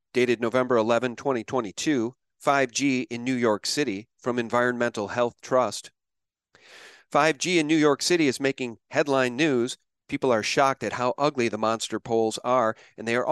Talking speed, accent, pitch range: 160 wpm, American, 120-140 Hz